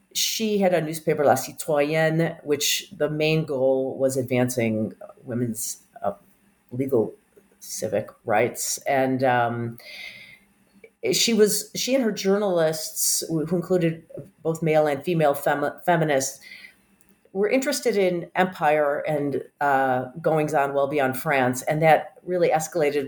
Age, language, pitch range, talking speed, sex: 40-59, English, 130-175 Hz, 125 wpm, female